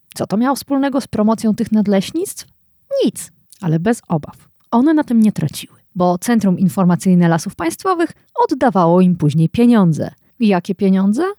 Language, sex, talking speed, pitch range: Polish, female, 155 wpm, 175-265 Hz